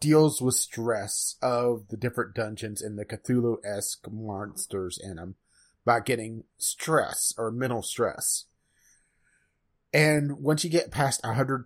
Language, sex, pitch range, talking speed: English, male, 110-140 Hz, 130 wpm